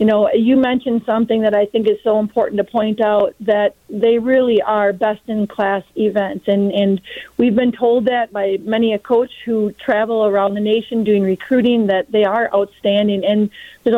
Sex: female